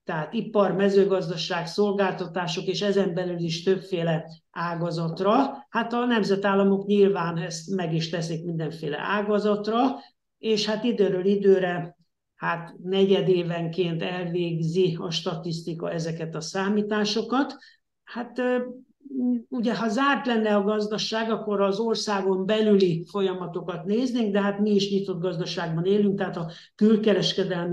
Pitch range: 175-205 Hz